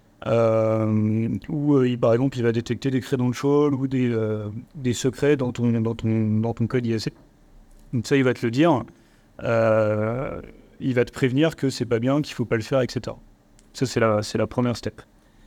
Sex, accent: male, French